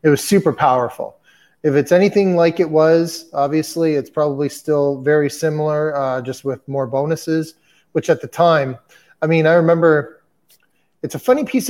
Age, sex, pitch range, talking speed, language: 30-49, male, 135-160 Hz, 170 wpm, English